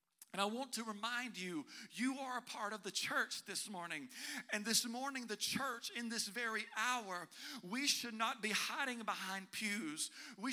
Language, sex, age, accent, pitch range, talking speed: English, male, 50-69, American, 215-255 Hz, 180 wpm